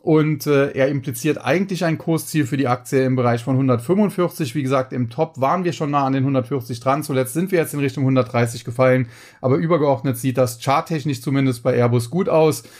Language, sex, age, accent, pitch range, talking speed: German, male, 30-49, German, 125-155 Hz, 205 wpm